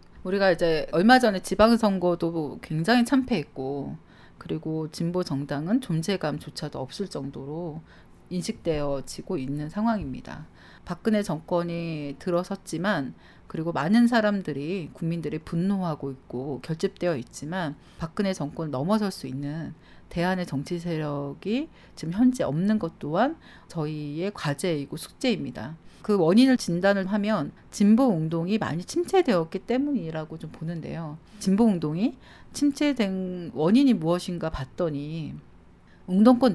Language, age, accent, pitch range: Korean, 40-59, native, 150-210 Hz